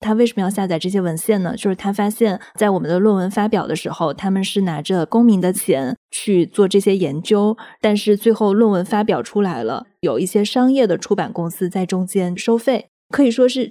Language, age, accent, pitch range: Chinese, 20-39, native, 195-230 Hz